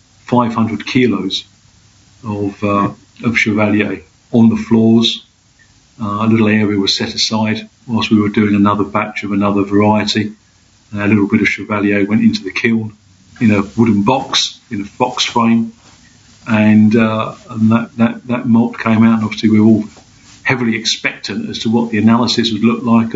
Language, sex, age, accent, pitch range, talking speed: English, male, 50-69, British, 105-115 Hz, 175 wpm